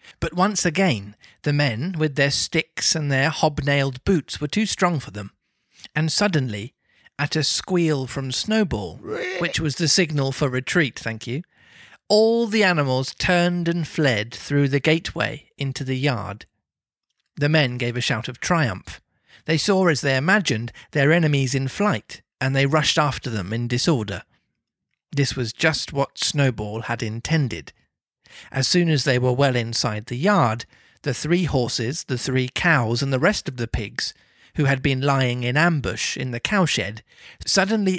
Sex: male